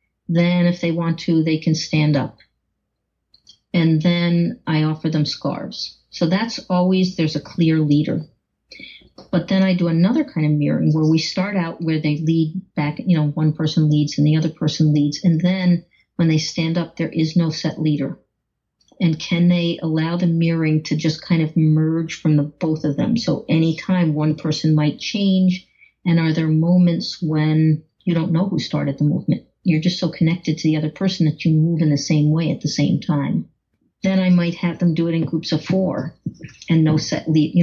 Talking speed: 205 wpm